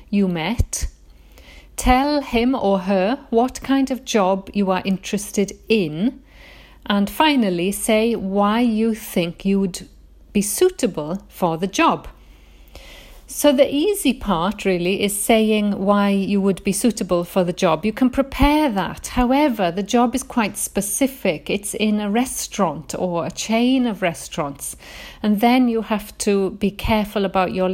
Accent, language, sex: British, English, female